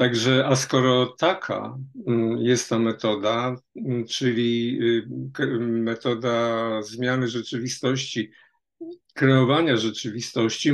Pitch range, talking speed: 120-140 Hz, 75 wpm